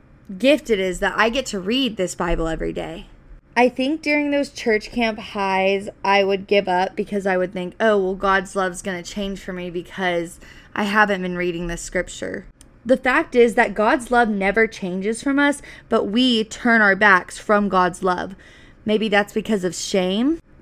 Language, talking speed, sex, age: English, 190 wpm, female, 20-39